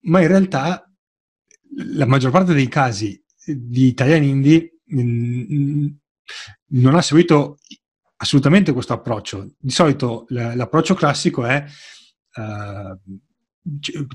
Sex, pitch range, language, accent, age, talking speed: male, 120-155 Hz, Italian, native, 30-49, 100 wpm